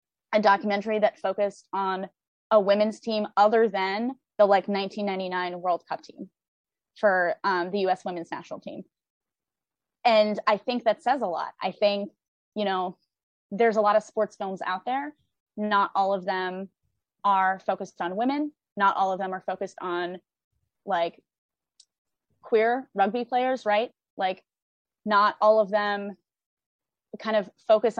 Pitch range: 190-225 Hz